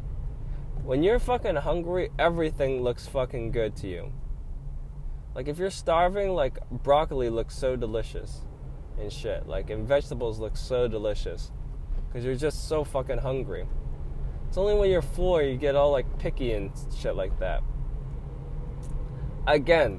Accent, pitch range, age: American, 125-180 Hz, 20-39